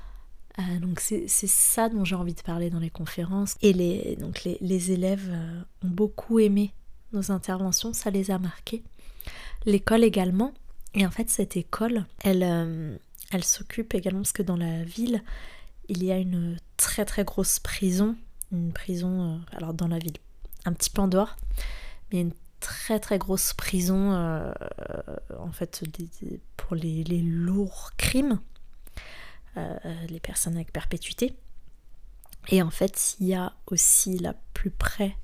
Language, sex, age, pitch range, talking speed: French, female, 20-39, 170-200 Hz, 160 wpm